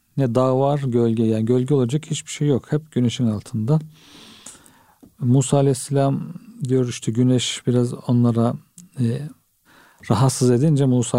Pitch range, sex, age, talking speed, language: 115-140 Hz, male, 50-69, 130 wpm, Turkish